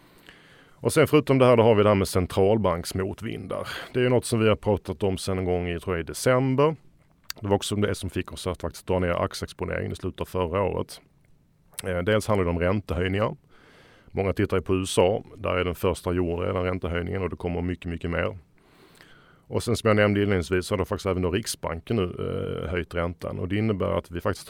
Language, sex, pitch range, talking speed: Swedish, male, 90-105 Hz, 225 wpm